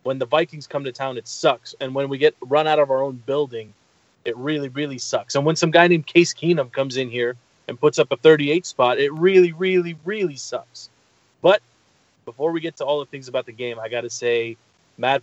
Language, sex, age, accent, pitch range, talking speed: English, male, 20-39, American, 120-140 Hz, 235 wpm